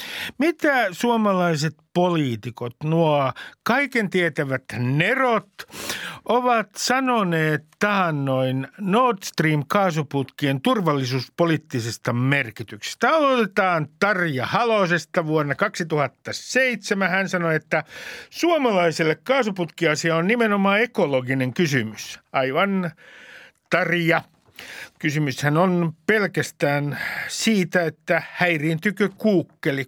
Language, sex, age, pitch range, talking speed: Finnish, male, 60-79, 145-205 Hz, 75 wpm